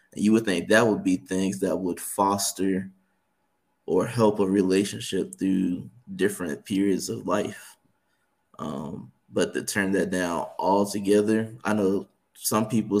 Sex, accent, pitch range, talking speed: male, American, 95-105 Hz, 140 wpm